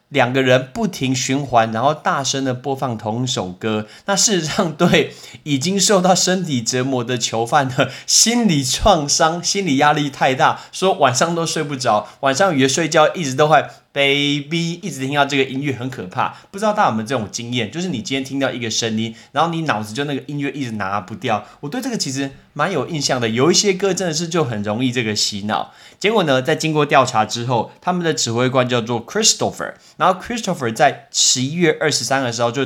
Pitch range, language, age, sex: 120-165 Hz, Chinese, 20-39, male